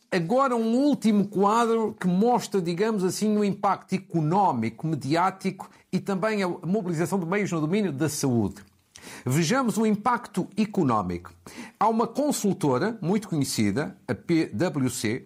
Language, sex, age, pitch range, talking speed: Portuguese, male, 50-69, 145-205 Hz, 130 wpm